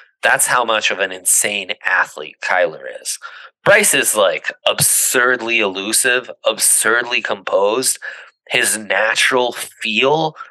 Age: 30-49